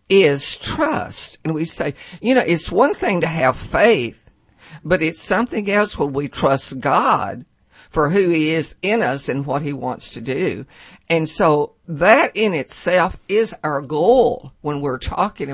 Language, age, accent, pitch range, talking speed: English, 50-69, American, 140-190 Hz, 170 wpm